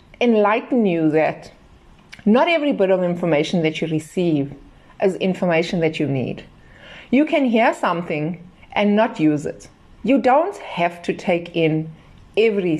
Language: English